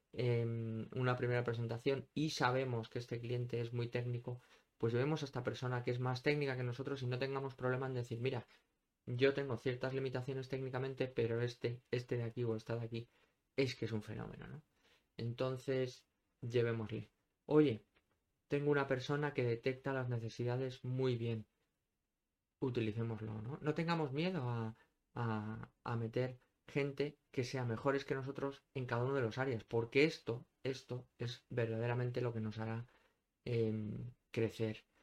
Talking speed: 160 wpm